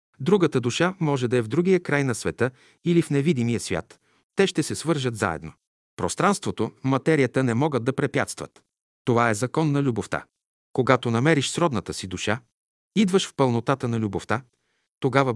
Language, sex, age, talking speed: Bulgarian, male, 50-69, 160 wpm